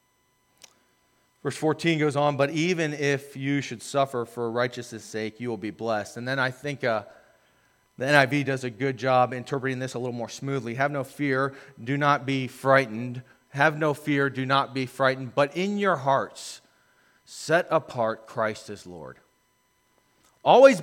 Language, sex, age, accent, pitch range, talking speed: English, male, 30-49, American, 135-190 Hz, 165 wpm